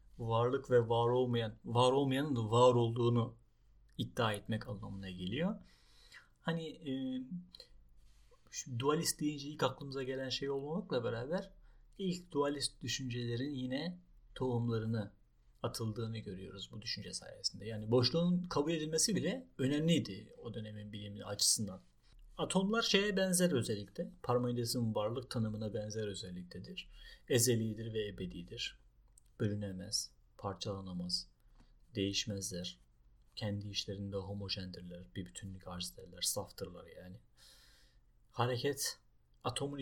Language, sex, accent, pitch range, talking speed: Turkish, male, native, 105-135 Hz, 105 wpm